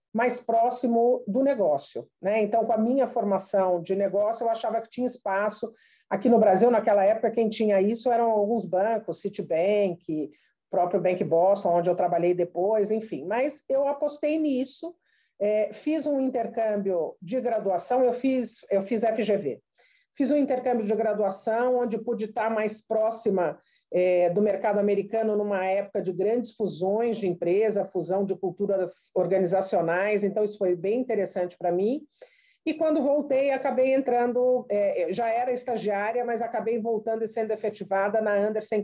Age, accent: 50-69, Brazilian